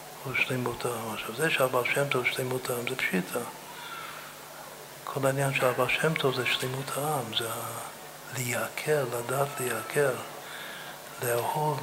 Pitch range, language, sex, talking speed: 125-140 Hz, Hebrew, male, 125 wpm